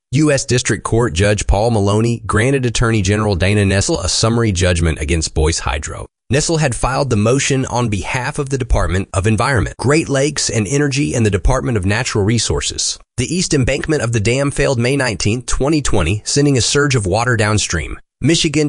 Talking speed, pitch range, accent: 180 wpm, 105-135 Hz, American